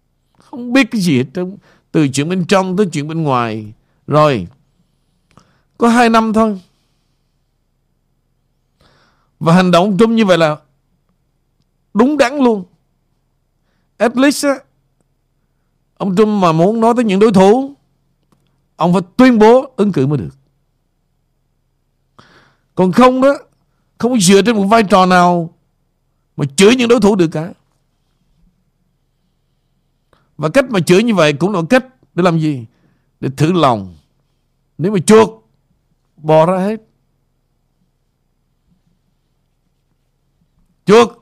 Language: Vietnamese